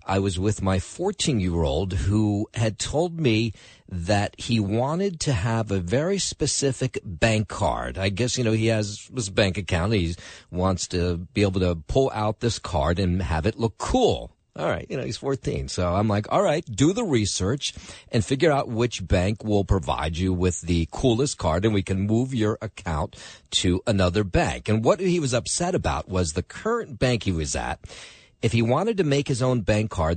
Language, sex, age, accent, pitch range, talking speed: English, male, 50-69, American, 95-125 Hz, 200 wpm